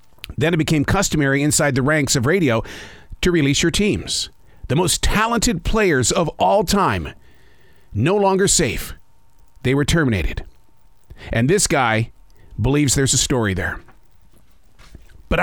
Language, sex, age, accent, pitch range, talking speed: English, male, 50-69, American, 115-180 Hz, 135 wpm